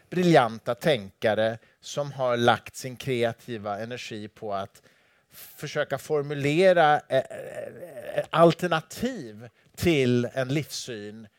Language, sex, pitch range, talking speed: English, male, 115-150 Hz, 85 wpm